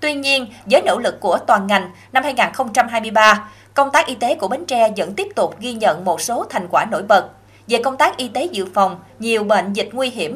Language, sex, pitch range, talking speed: Vietnamese, female, 200-255 Hz, 230 wpm